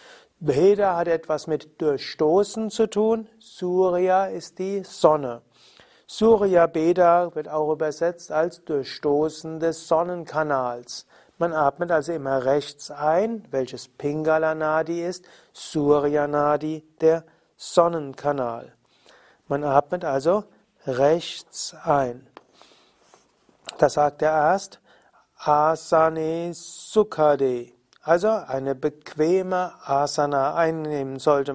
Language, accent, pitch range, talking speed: German, German, 145-180 Hz, 90 wpm